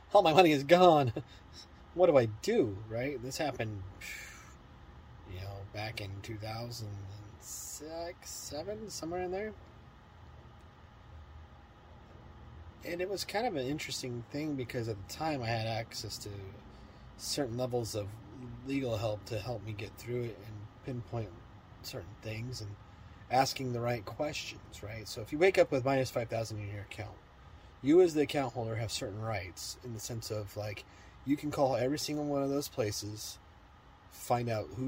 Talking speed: 165 wpm